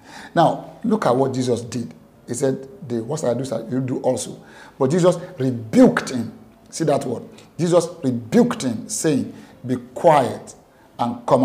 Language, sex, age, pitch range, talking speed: English, male, 50-69, 120-160 Hz, 160 wpm